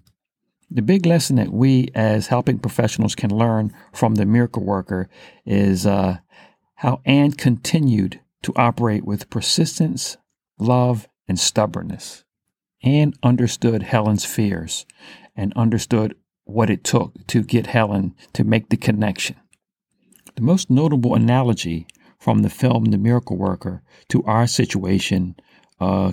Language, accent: English, American